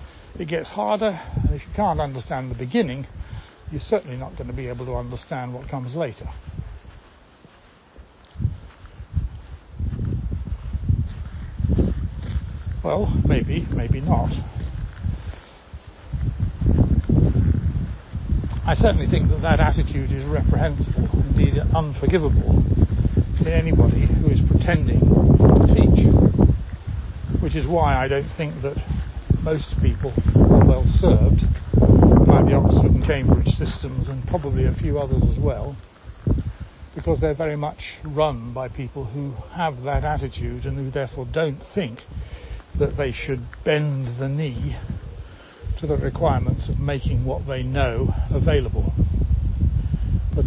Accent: British